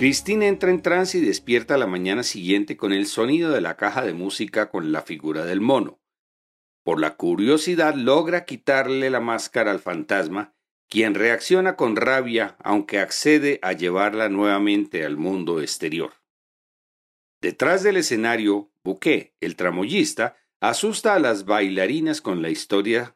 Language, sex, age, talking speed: Spanish, male, 50-69, 145 wpm